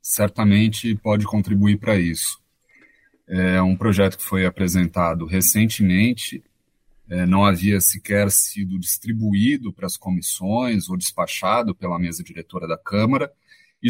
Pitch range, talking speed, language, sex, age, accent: 100-125 Hz, 125 wpm, Portuguese, male, 30-49, Brazilian